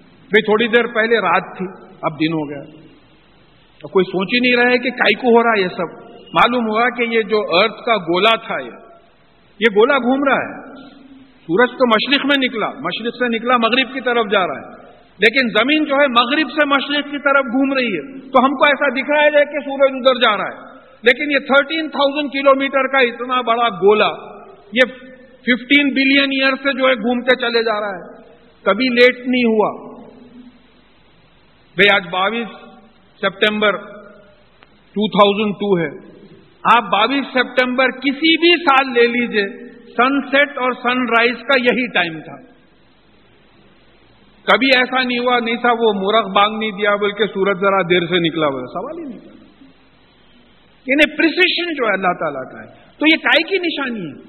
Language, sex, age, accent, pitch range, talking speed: English, male, 50-69, Indian, 205-270 Hz, 165 wpm